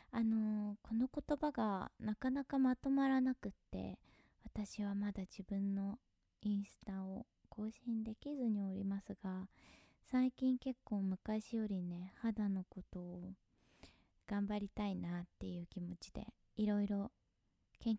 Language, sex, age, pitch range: Japanese, female, 20-39, 190-235 Hz